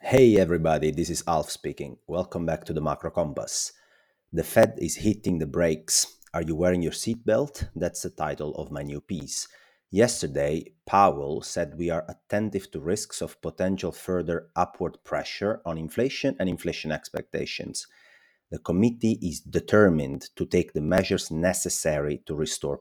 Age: 30-49